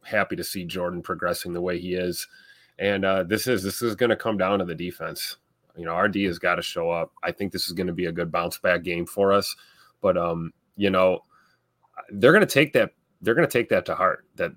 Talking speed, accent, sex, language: 250 wpm, American, male, English